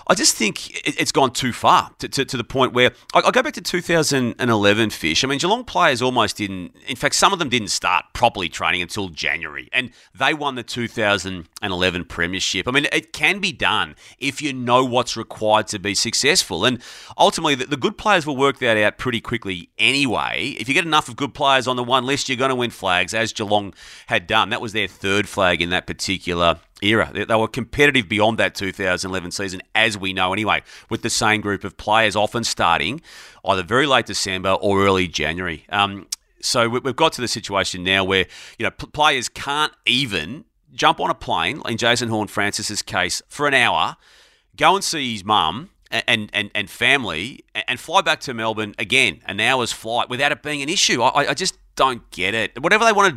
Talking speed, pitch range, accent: 205 wpm, 95-130 Hz, Australian